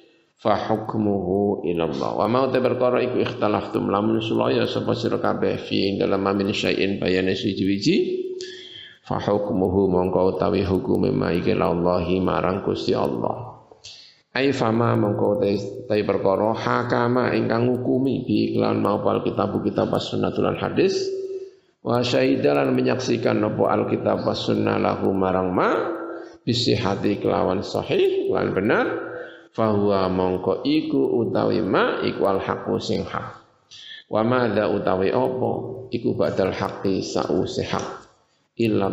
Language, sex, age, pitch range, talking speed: Indonesian, male, 50-69, 100-135 Hz, 120 wpm